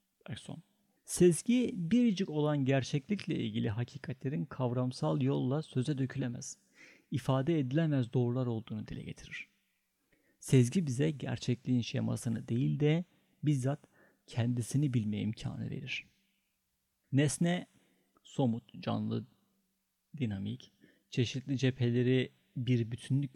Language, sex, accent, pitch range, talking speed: Turkish, male, native, 120-150 Hz, 90 wpm